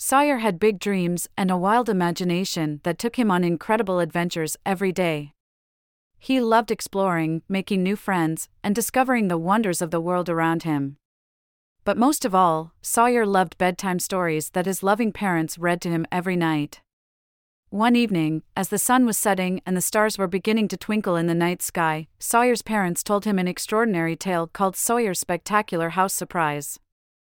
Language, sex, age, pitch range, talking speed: English, female, 40-59, 165-215 Hz, 170 wpm